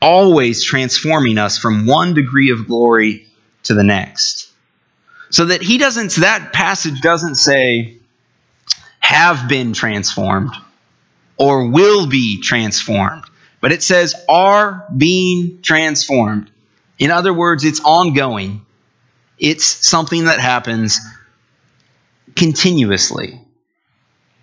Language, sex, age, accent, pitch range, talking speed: English, male, 30-49, American, 115-165 Hz, 105 wpm